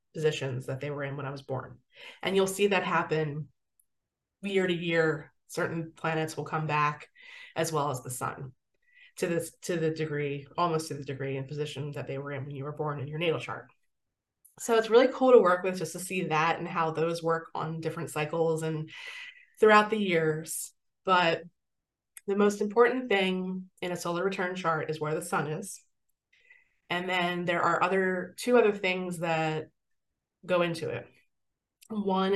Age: 20-39